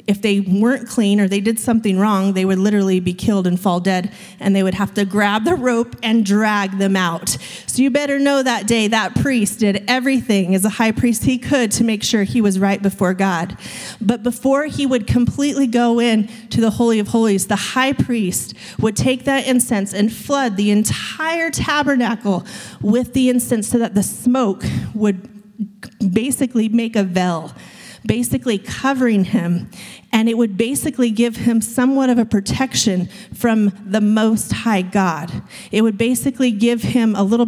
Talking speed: 185 wpm